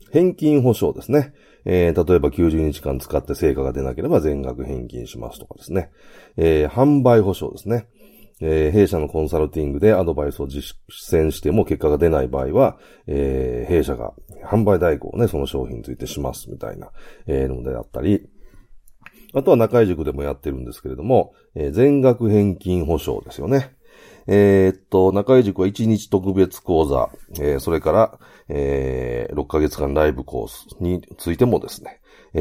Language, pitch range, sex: Japanese, 70-110 Hz, male